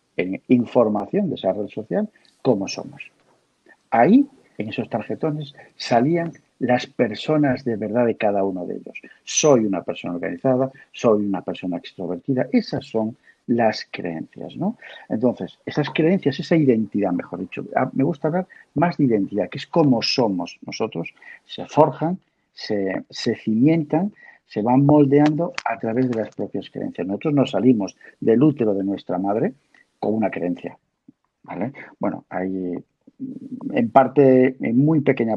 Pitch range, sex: 110-155 Hz, male